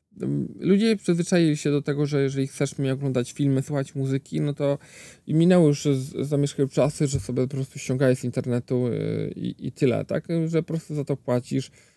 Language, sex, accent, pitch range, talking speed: Polish, male, native, 135-165 Hz, 185 wpm